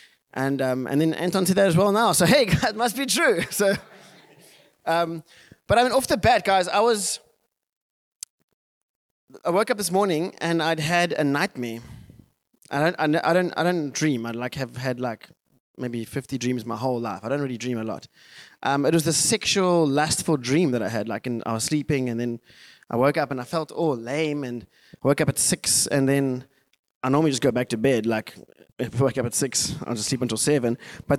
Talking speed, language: 225 wpm, English